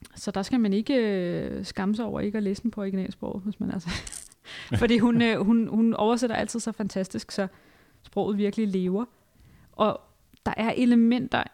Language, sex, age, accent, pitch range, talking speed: Danish, female, 30-49, native, 185-220 Hz, 180 wpm